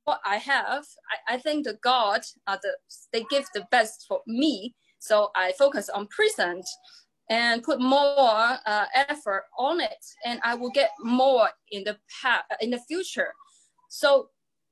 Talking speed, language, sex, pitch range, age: 165 wpm, English, female, 235-305 Hz, 20-39